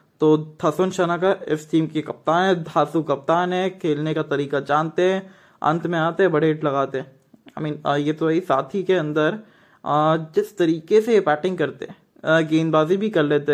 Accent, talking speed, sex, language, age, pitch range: Indian, 185 wpm, male, English, 20-39, 150-175 Hz